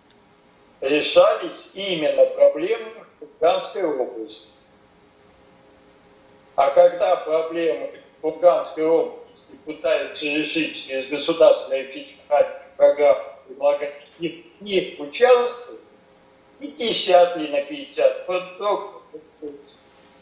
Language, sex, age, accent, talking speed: Russian, male, 50-69, native, 90 wpm